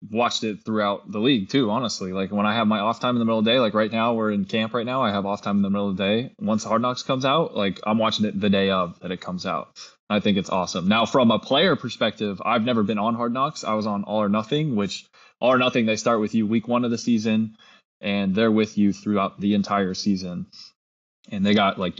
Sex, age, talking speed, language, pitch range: male, 20-39, 275 wpm, English, 105-130 Hz